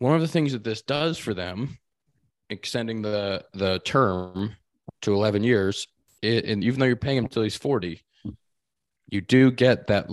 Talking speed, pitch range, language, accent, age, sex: 180 wpm, 95-115 Hz, English, American, 20-39, male